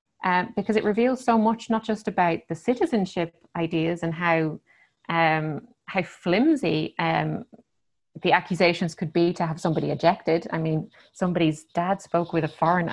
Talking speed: 160 wpm